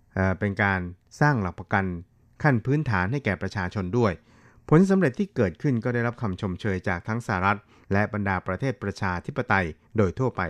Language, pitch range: Thai, 95-120 Hz